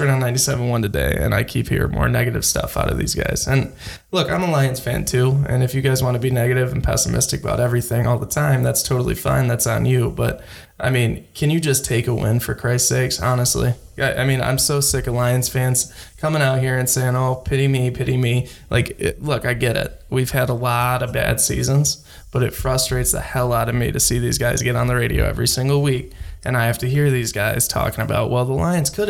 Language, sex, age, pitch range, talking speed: English, male, 20-39, 125-150 Hz, 240 wpm